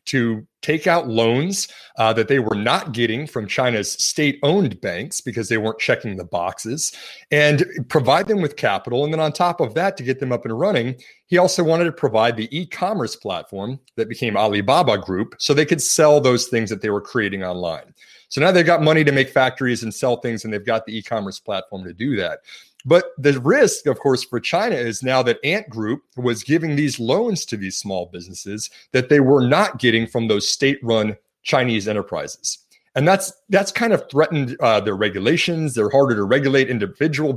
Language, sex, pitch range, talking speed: English, male, 115-150 Hz, 200 wpm